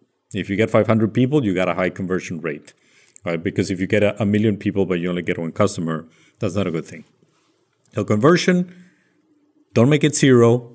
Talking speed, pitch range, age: 205 wpm, 90-125 Hz, 40-59